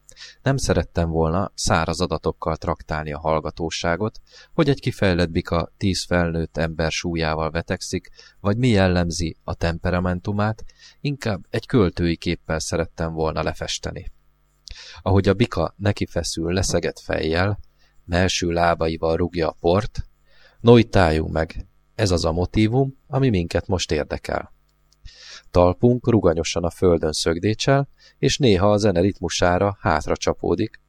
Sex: male